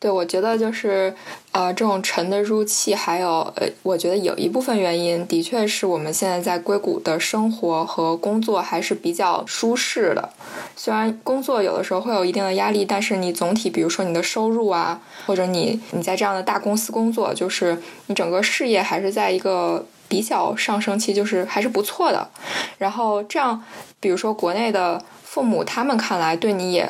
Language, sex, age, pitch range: Chinese, female, 10-29, 175-215 Hz